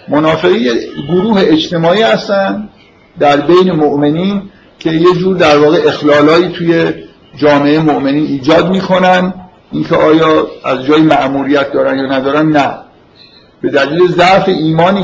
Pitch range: 140-180 Hz